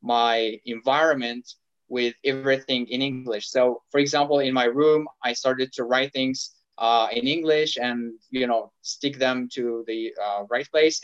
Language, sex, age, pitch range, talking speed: English, male, 20-39, 120-150 Hz, 165 wpm